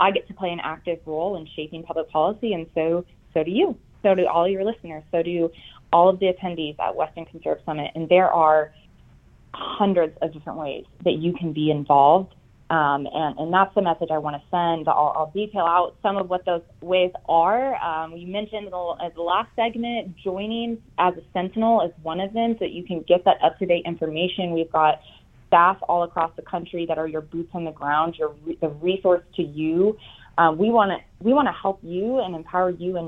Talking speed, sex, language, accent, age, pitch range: 210 wpm, female, English, American, 20-39, 155-185 Hz